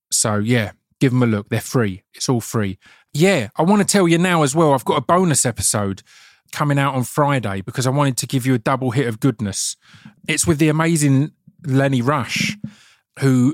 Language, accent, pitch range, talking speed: English, British, 115-150 Hz, 210 wpm